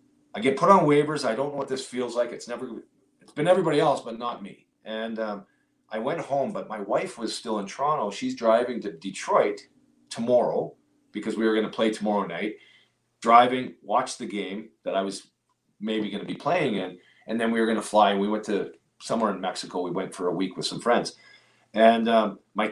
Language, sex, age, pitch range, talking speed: English, male, 40-59, 105-130 Hz, 220 wpm